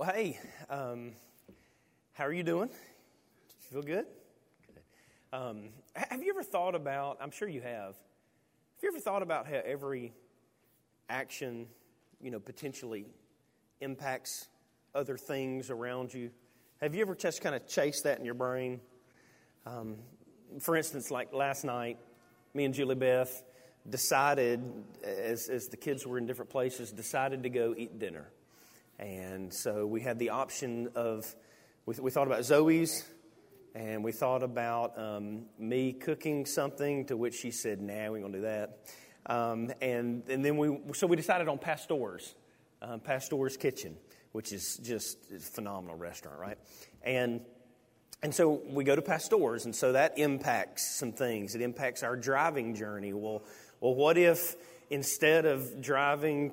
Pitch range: 115-140 Hz